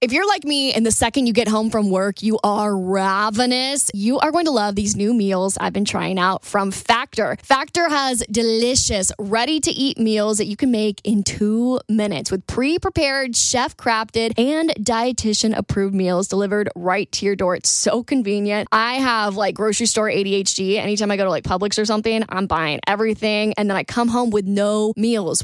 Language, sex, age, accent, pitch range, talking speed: English, female, 10-29, American, 205-260 Hz, 200 wpm